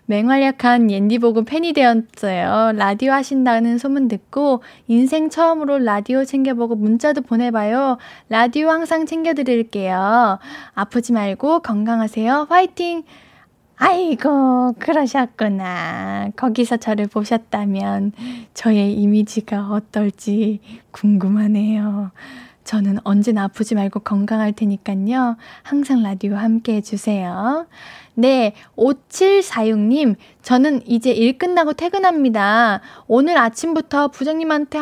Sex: female